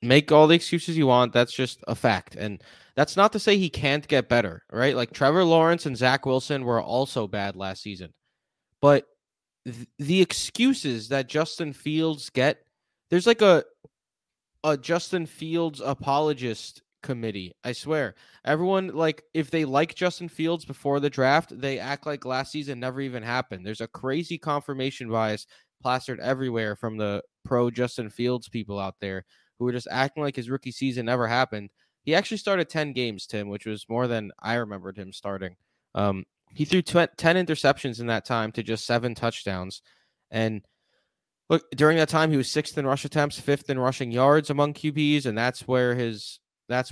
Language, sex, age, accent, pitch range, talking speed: English, male, 20-39, American, 115-150 Hz, 180 wpm